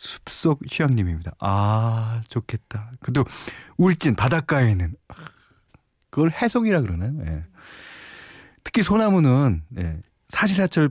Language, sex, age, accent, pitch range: Korean, male, 40-59, native, 95-135 Hz